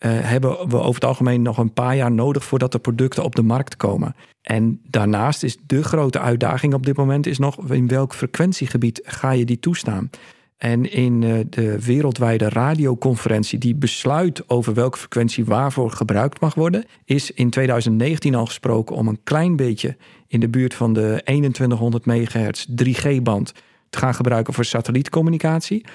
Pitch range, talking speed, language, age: 120-150 Hz, 165 wpm, Dutch, 50-69